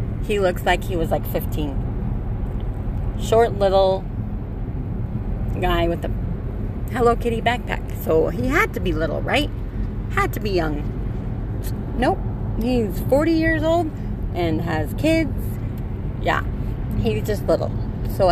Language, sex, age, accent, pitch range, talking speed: English, female, 30-49, American, 95-120 Hz, 130 wpm